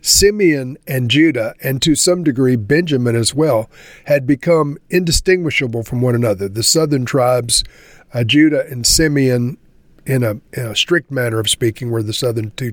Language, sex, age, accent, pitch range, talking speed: English, male, 50-69, American, 120-150 Hz, 155 wpm